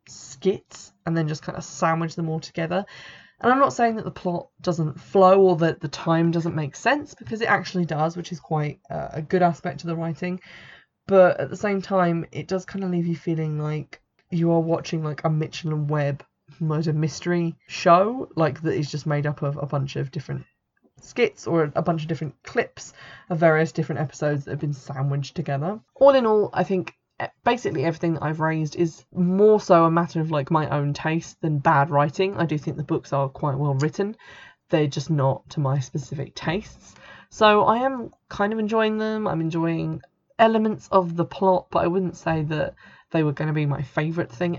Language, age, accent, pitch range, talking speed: English, 20-39, British, 155-180 Hz, 205 wpm